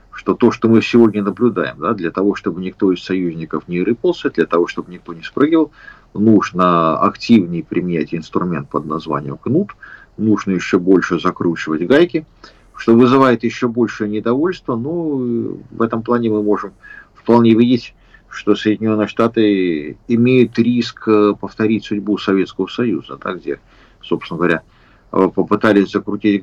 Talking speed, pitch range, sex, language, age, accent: 135 wpm, 95-120 Hz, male, Russian, 50-69, native